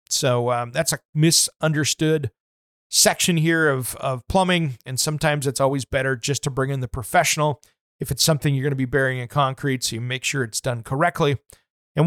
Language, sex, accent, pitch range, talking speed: English, male, American, 135-190 Hz, 195 wpm